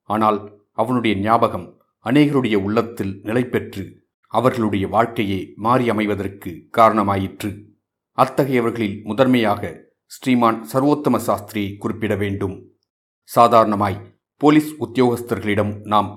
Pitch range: 100-120 Hz